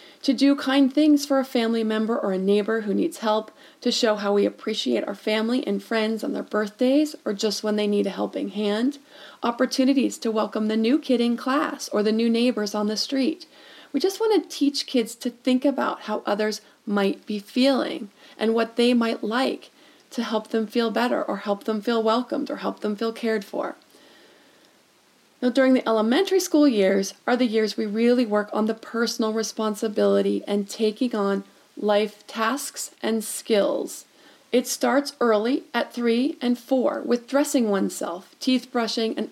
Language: English